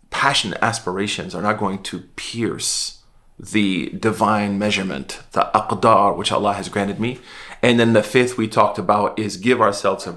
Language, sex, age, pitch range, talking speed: English, male, 30-49, 100-110 Hz, 165 wpm